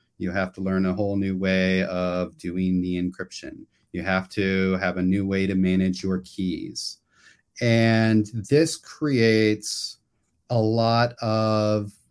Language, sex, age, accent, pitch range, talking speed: English, male, 30-49, American, 95-120 Hz, 145 wpm